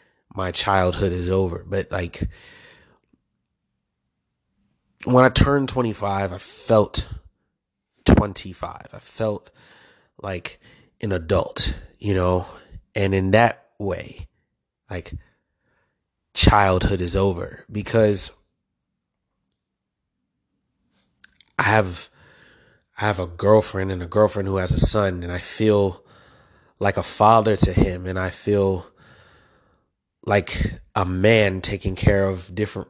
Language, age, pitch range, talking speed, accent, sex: English, 30-49, 90-105 Hz, 110 wpm, American, male